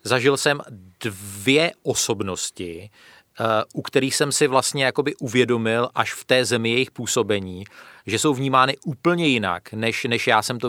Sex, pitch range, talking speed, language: male, 105-130 Hz, 145 wpm, Czech